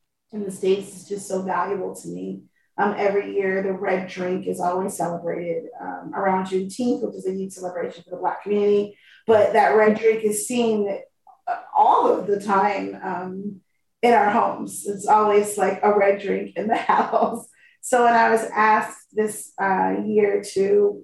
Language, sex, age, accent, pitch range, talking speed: English, female, 30-49, American, 185-215 Hz, 175 wpm